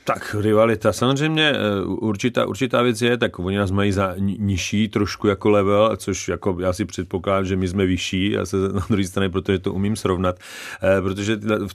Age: 40-59